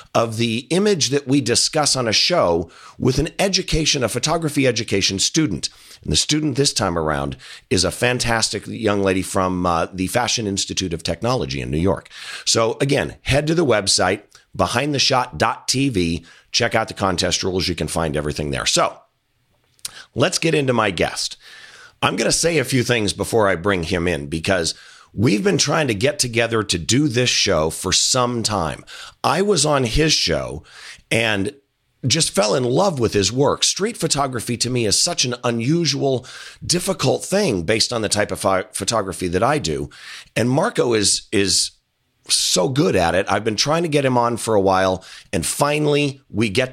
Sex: male